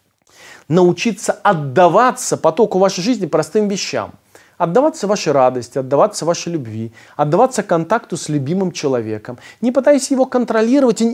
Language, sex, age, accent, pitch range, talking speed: Russian, male, 30-49, native, 135-190 Hz, 120 wpm